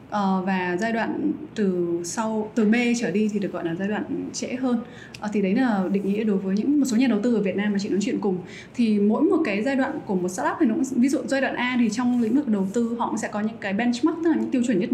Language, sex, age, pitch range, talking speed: Vietnamese, female, 20-39, 200-270 Hz, 305 wpm